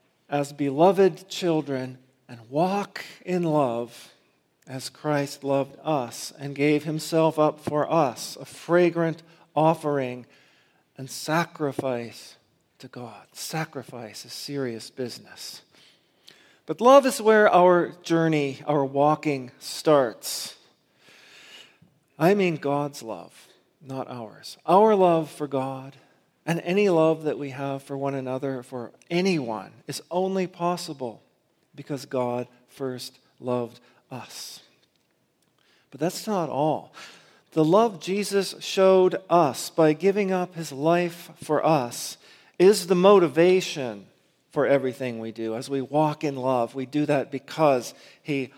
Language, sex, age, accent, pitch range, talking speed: English, male, 40-59, American, 130-170 Hz, 120 wpm